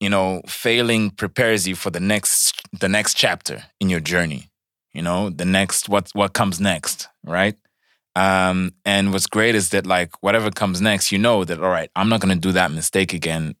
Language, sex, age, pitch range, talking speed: Portuguese, male, 20-39, 85-100 Hz, 200 wpm